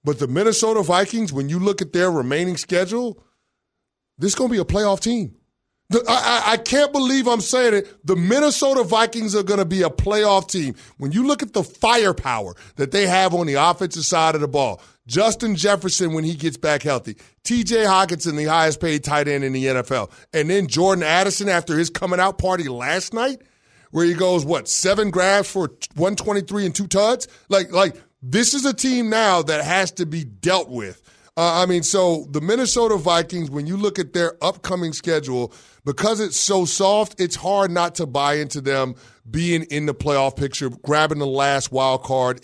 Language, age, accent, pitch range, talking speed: English, 30-49, American, 140-195 Hz, 195 wpm